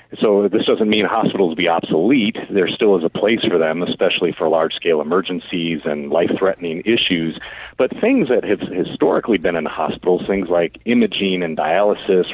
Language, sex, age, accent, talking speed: English, male, 40-59, American, 165 wpm